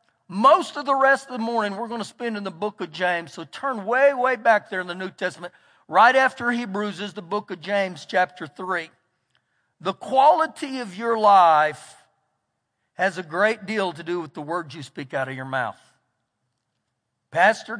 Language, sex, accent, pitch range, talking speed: English, male, American, 180-225 Hz, 190 wpm